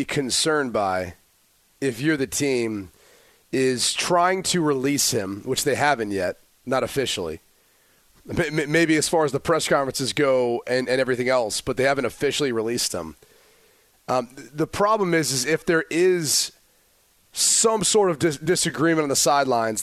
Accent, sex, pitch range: American, male, 130-165 Hz